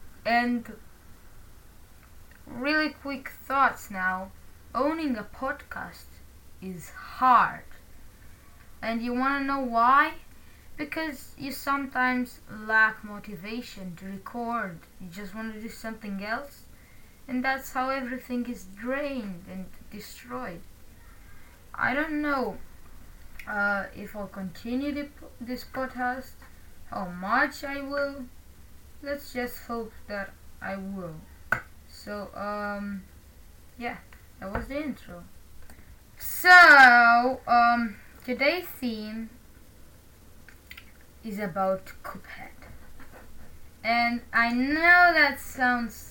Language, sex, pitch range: Romanian, female, 195-265 Hz